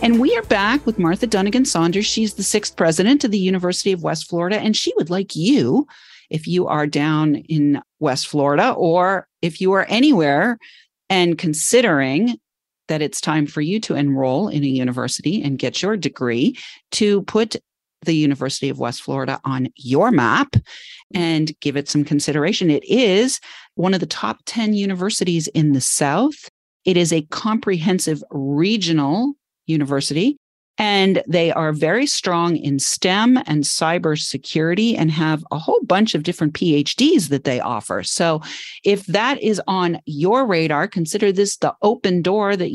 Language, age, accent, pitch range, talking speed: English, 40-59, American, 150-205 Hz, 165 wpm